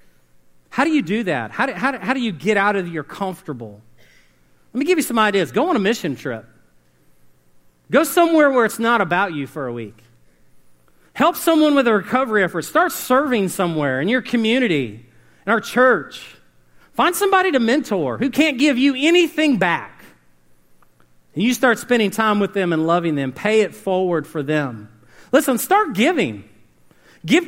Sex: male